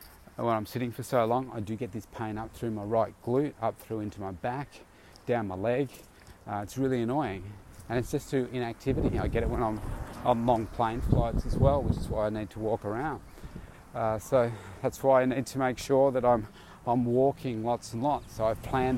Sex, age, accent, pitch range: male, 30-49, Australian, 105-130 Hz